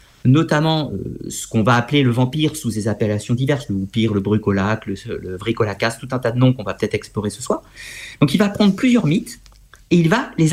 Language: French